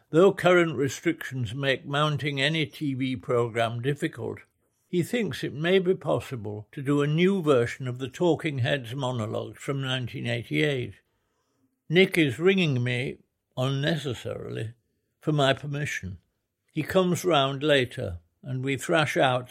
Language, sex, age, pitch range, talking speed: English, male, 60-79, 125-155 Hz, 130 wpm